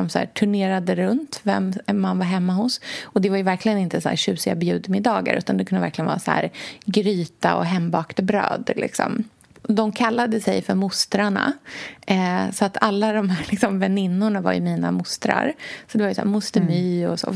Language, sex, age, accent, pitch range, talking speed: Swedish, female, 30-49, native, 180-220 Hz, 195 wpm